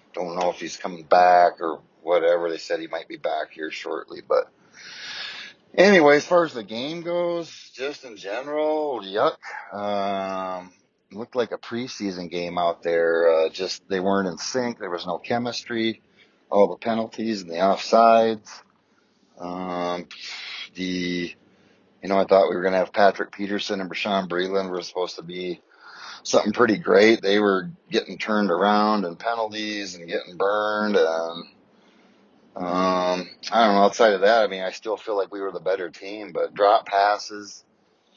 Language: English